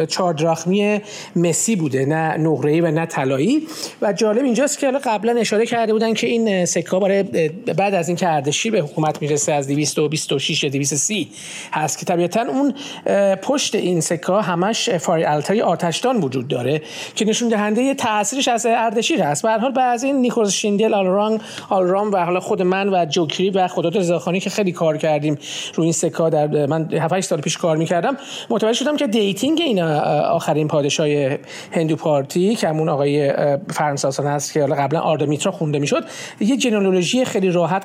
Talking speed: 170 wpm